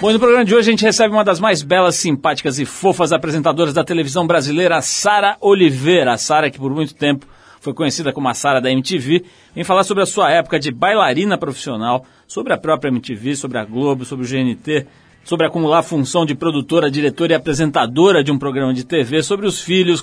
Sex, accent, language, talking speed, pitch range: male, Brazilian, Portuguese, 215 wpm, 140-180 Hz